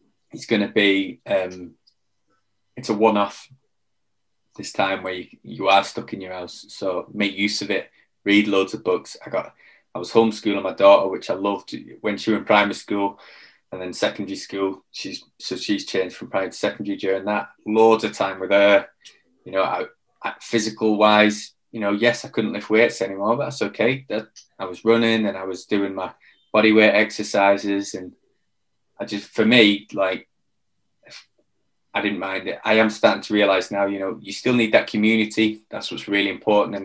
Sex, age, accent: male, 20-39, British